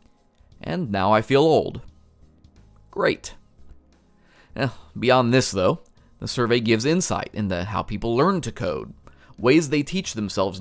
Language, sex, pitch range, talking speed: English, male, 95-130 Hz, 130 wpm